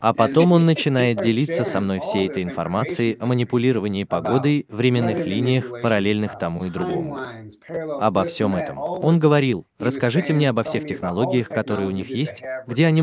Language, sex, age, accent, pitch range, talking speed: Russian, male, 20-39, native, 110-145 Hz, 160 wpm